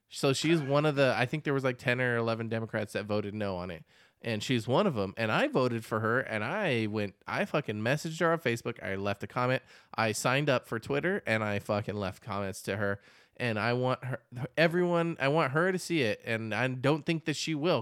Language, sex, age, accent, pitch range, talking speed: English, male, 20-39, American, 110-145 Hz, 245 wpm